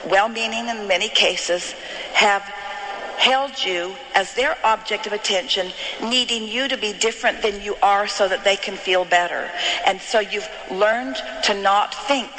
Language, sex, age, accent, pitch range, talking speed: English, female, 50-69, American, 185-235 Hz, 160 wpm